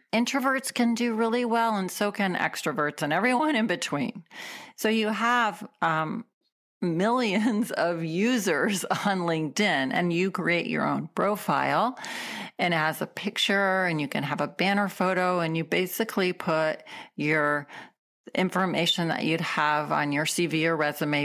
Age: 40-59